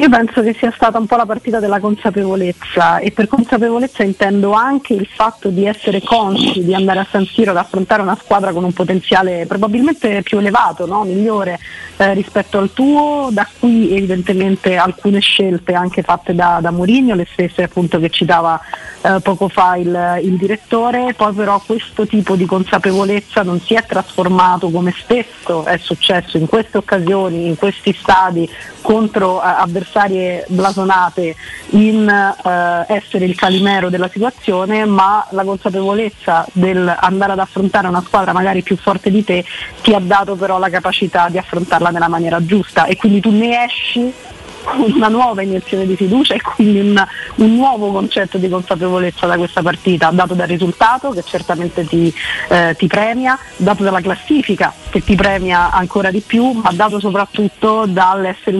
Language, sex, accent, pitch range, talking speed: Italian, female, native, 180-210 Hz, 165 wpm